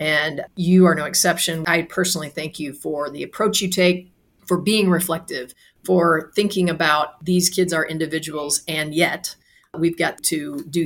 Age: 40-59